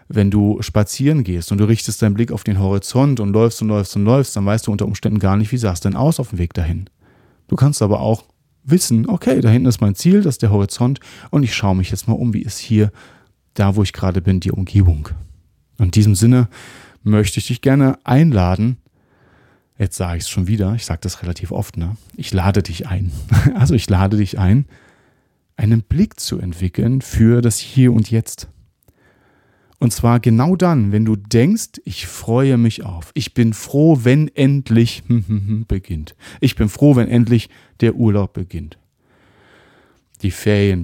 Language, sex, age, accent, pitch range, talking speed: German, male, 30-49, German, 95-125 Hz, 190 wpm